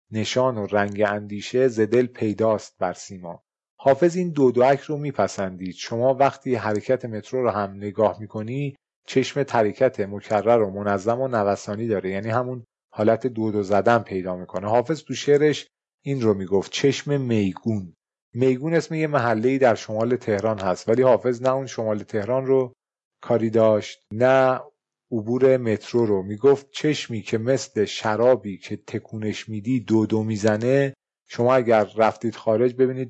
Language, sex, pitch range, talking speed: Persian, male, 105-130 Hz, 150 wpm